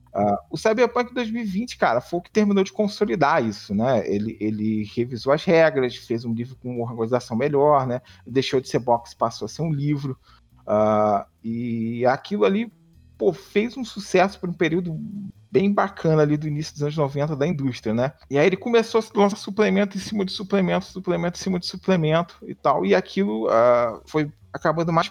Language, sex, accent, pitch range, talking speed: Portuguese, male, Brazilian, 120-170 Hz, 195 wpm